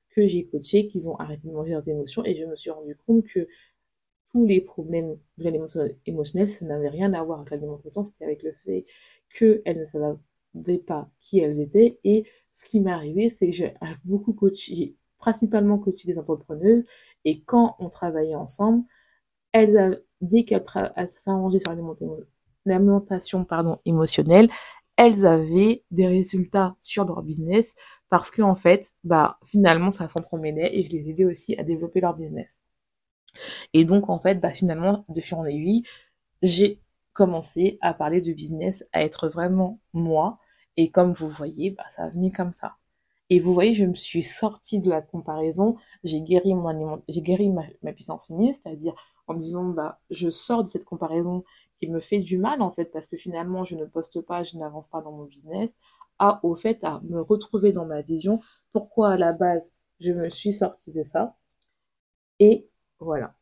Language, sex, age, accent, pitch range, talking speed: French, female, 20-39, French, 165-205 Hz, 185 wpm